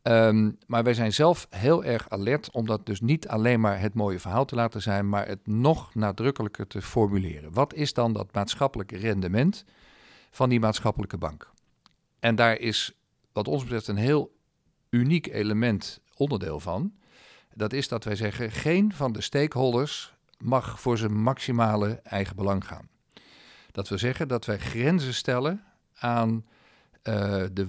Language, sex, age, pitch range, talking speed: Dutch, male, 50-69, 100-125 Hz, 160 wpm